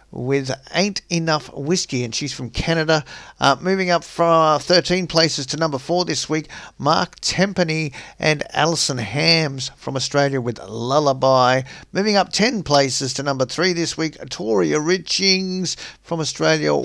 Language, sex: English, male